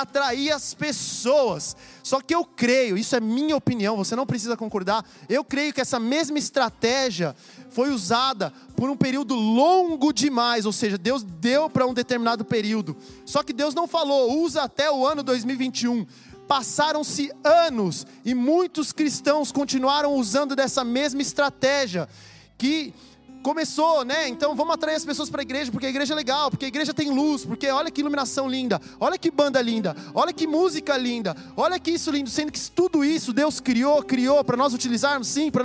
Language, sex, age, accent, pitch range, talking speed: Portuguese, male, 20-39, Brazilian, 250-300 Hz, 180 wpm